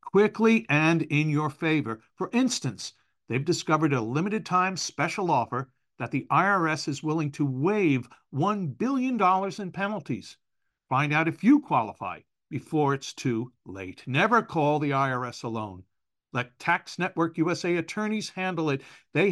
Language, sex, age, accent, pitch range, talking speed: English, male, 50-69, American, 145-210 Hz, 145 wpm